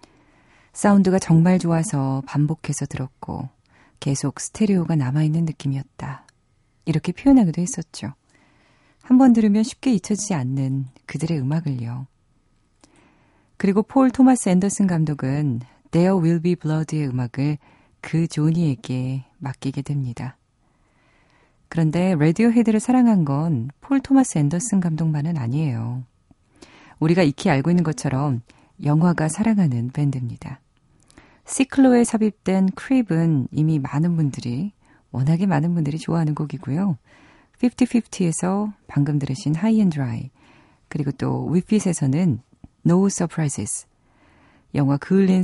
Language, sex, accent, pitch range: Korean, female, native, 135-190 Hz